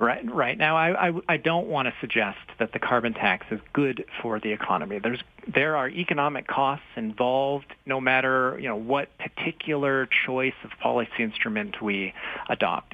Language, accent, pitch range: English, American, 125-165 Hz